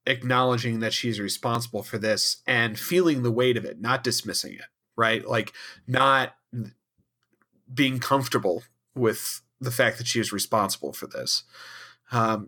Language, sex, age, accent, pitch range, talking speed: English, male, 40-59, American, 110-125 Hz, 145 wpm